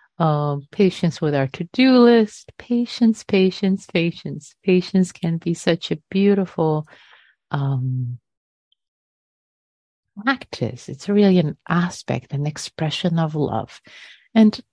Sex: female